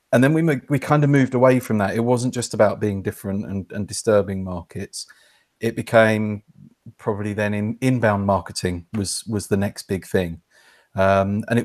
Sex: male